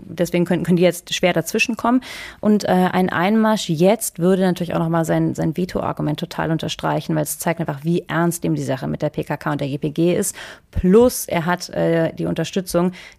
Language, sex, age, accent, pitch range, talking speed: German, female, 30-49, German, 155-185 Hz, 200 wpm